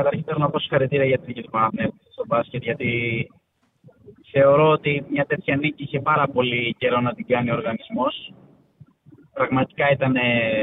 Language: Greek